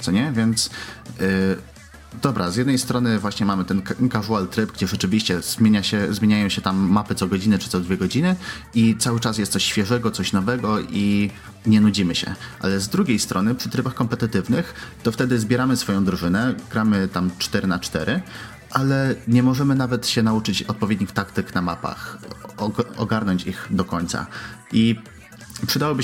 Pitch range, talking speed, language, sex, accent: 95-120 Hz, 170 wpm, Polish, male, native